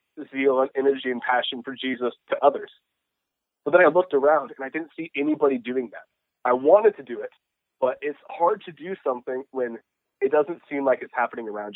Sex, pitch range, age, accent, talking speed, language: male, 125-155 Hz, 30-49, American, 205 wpm, English